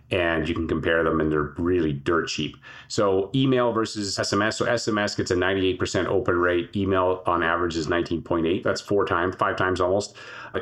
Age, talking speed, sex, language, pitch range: 30-49, 185 wpm, male, English, 85-110 Hz